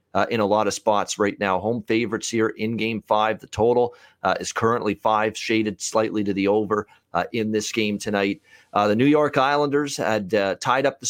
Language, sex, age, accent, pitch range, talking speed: English, male, 40-59, American, 105-125 Hz, 215 wpm